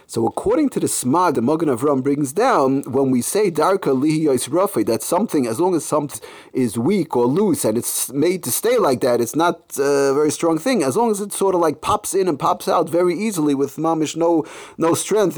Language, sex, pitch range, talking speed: English, male, 140-205 Hz, 230 wpm